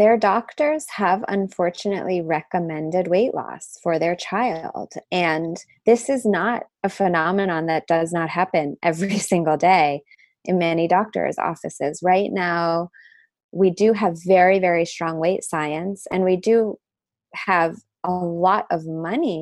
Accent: American